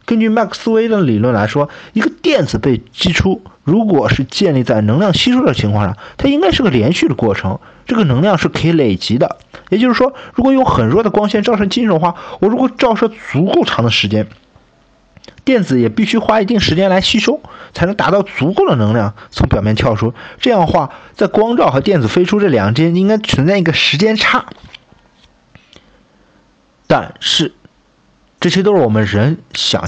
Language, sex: Chinese, male